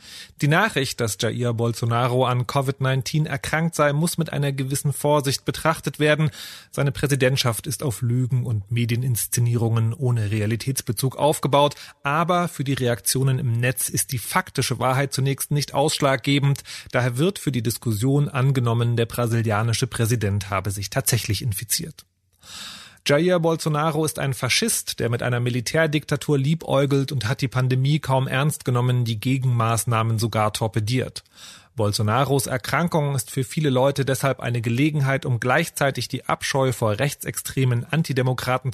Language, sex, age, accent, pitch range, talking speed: German, male, 30-49, German, 115-145 Hz, 140 wpm